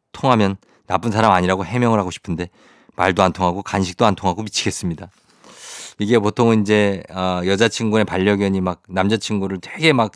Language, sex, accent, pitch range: Korean, male, native, 95-120 Hz